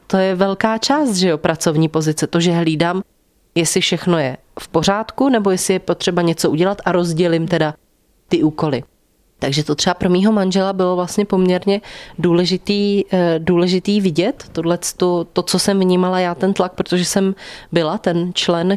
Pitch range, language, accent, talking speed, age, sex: 170-190 Hz, Czech, native, 165 wpm, 30-49, female